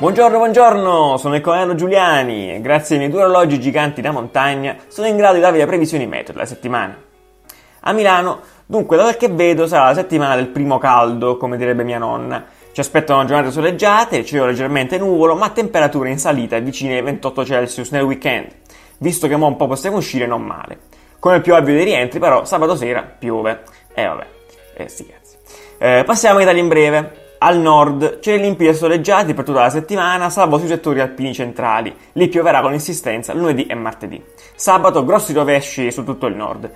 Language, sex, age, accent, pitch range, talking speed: Italian, male, 20-39, native, 130-175 Hz, 195 wpm